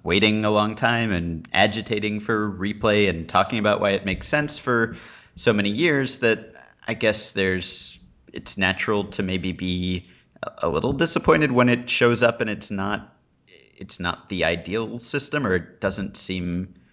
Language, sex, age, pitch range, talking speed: English, male, 30-49, 95-115 Hz, 165 wpm